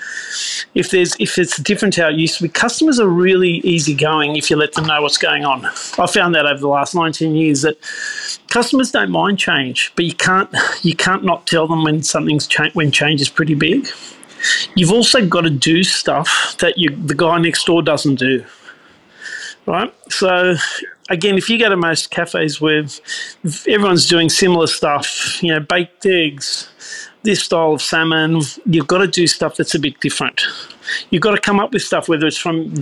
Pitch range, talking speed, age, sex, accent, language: 155-190 Hz, 195 wpm, 40-59, male, Australian, English